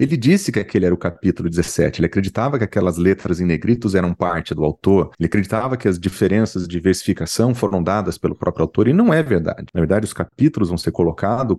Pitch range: 95-130 Hz